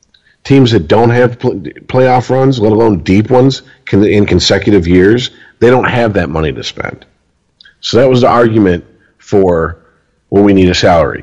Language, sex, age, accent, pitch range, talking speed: English, male, 40-59, American, 85-110 Hz, 170 wpm